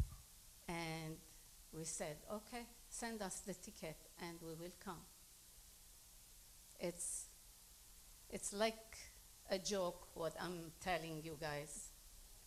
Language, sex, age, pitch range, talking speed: English, female, 50-69, 160-220 Hz, 105 wpm